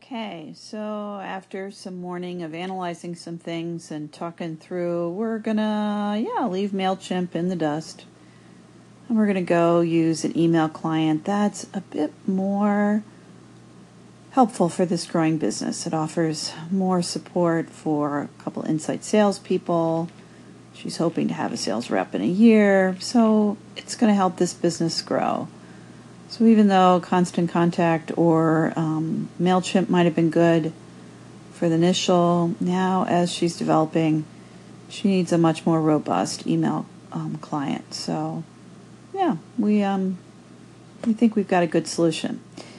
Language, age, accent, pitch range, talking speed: English, 40-59, American, 160-195 Hz, 145 wpm